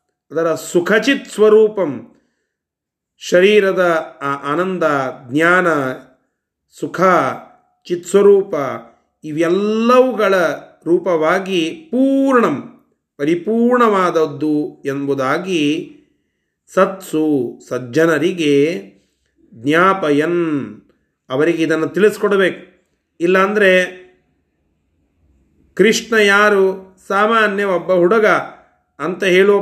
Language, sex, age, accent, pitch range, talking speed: Kannada, male, 30-49, native, 140-190 Hz, 60 wpm